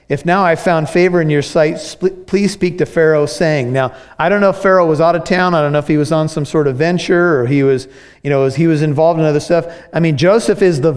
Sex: male